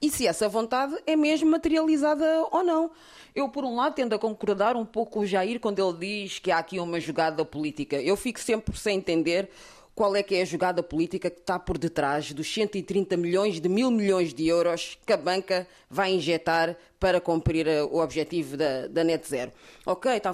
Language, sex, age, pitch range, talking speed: Portuguese, female, 20-39, 180-235 Hz, 205 wpm